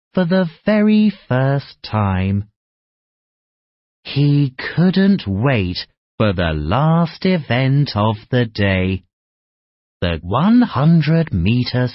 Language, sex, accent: Chinese, male, British